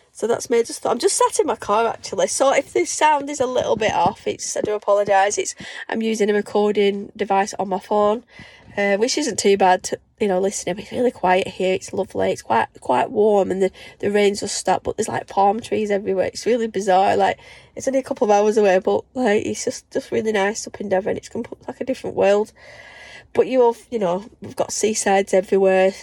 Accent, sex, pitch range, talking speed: British, female, 195-235 Hz, 230 wpm